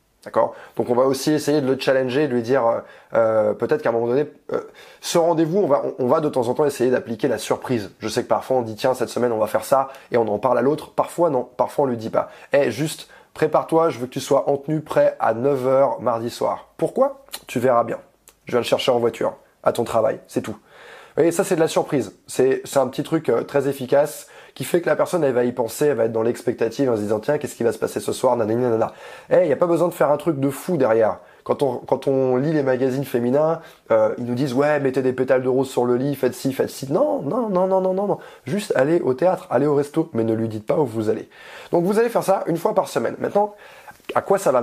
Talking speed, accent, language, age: 280 wpm, French, French, 20-39